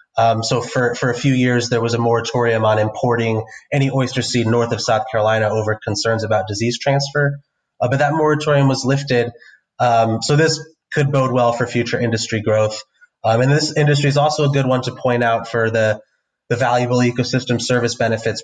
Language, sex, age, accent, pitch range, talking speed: English, male, 20-39, American, 115-135 Hz, 195 wpm